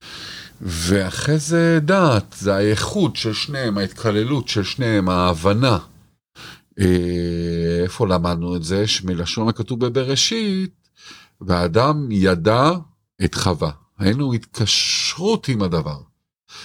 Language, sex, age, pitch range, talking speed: Hebrew, male, 50-69, 90-115 Hz, 95 wpm